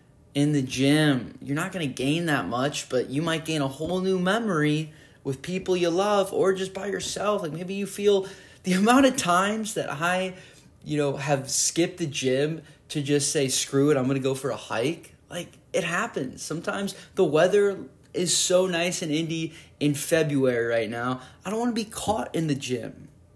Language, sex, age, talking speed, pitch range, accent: English, male, 20-39, 195 wpm, 130-170 Hz, American